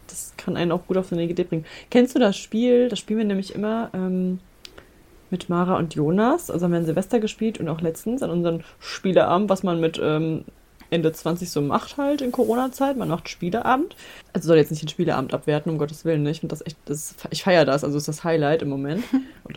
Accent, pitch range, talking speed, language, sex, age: German, 160-210 Hz, 225 wpm, German, female, 20-39